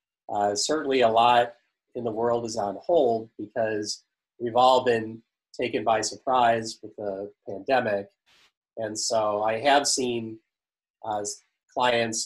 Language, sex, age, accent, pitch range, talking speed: English, male, 30-49, American, 110-130 Hz, 130 wpm